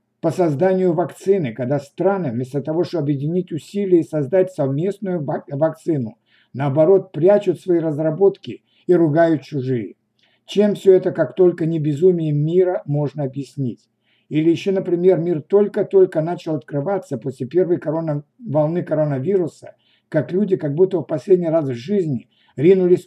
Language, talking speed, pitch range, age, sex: Russian, 135 wpm, 145-180 Hz, 60-79, male